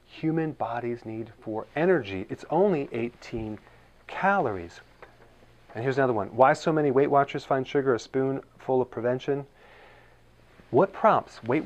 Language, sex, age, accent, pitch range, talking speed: English, male, 40-59, American, 110-145 Hz, 140 wpm